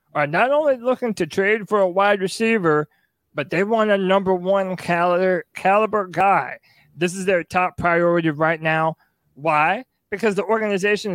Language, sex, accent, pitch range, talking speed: English, male, American, 155-210 Hz, 160 wpm